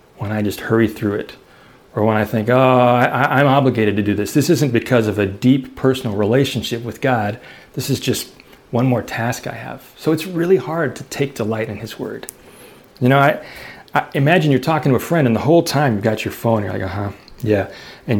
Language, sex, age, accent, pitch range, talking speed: English, male, 40-59, American, 105-130 Hz, 225 wpm